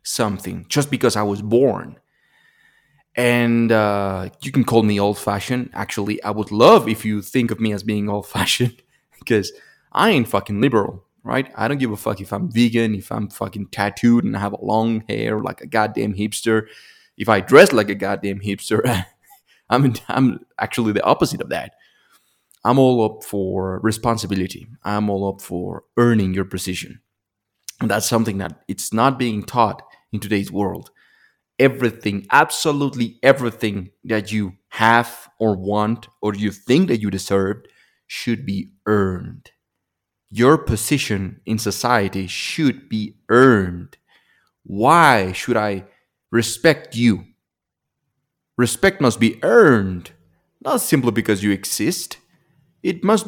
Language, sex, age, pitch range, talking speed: English, male, 20-39, 100-120 Hz, 145 wpm